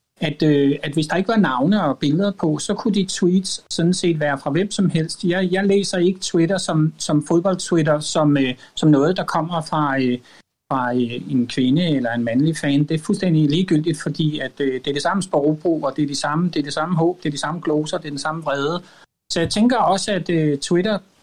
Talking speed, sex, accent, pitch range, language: 240 wpm, male, native, 145-185 Hz, Danish